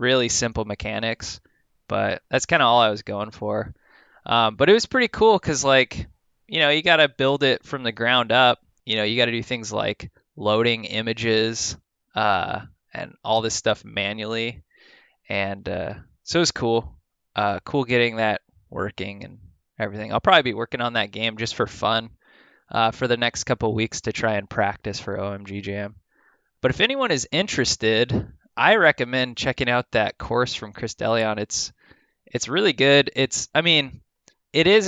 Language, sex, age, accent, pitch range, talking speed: English, male, 20-39, American, 105-130 Hz, 180 wpm